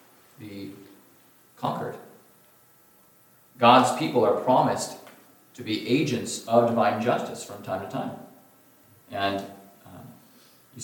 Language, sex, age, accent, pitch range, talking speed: English, male, 40-59, American, 100-120 Hz, 105 wpm